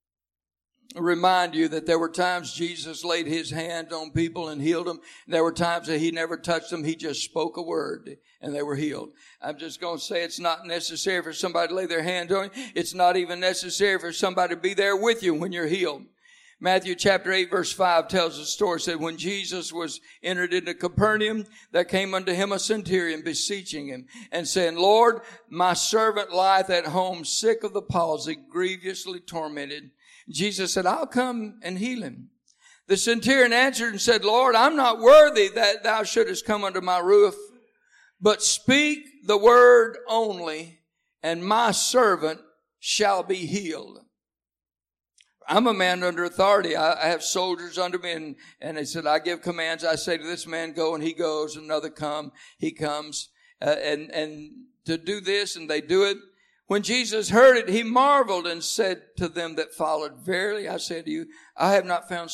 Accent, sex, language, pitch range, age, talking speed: American, male, English, 165-215 Hz, 60-79, 190 wpm